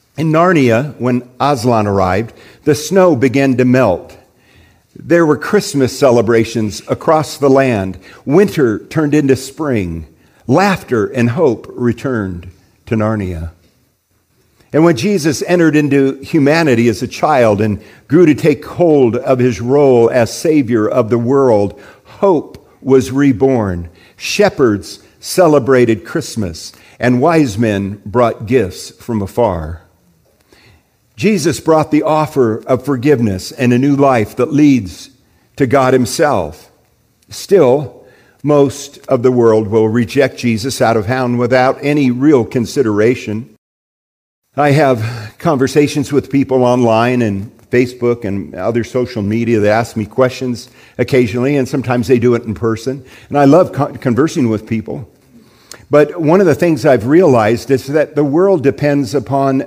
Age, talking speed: 50-69, 135 wpm